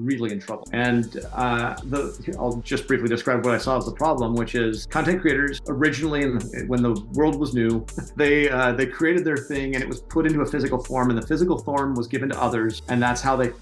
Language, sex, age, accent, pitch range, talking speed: English, male, 40-59, American, 120-145 Hz, 235 wpm